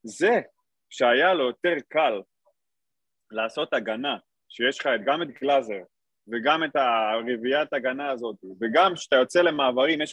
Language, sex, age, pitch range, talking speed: Hebrew, male, 30-49, 125-190 Hz, 130 wpm